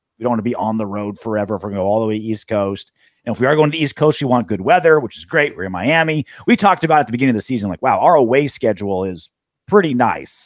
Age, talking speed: 30-49, 315 wpm